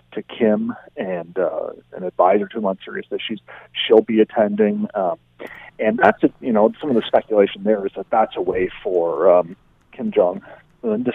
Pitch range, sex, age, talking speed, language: 100-160 Hz, male, 40-59, 190 wpm, English